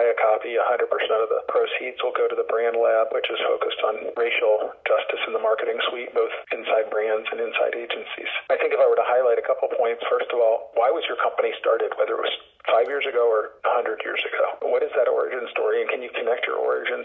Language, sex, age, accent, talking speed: English, male, 40-59, American, 235 wpm